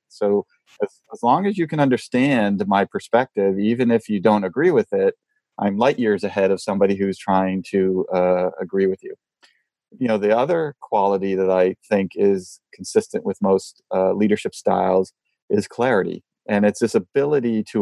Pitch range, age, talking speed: 95-110 Hz, 30-49, 175 wpm